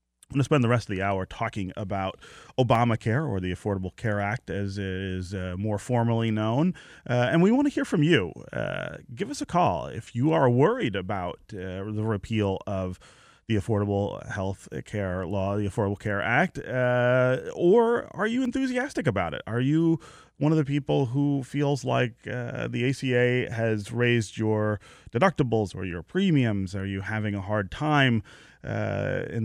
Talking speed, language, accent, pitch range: 180 wpm, English, American, 100-140 Hz